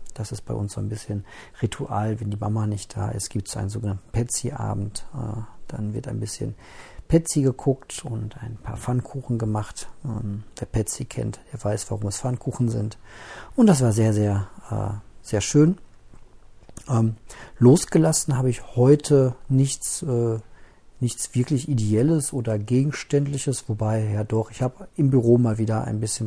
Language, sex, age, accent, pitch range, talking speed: German, male, 40-59, German, 105-125 Hz, 155 wpm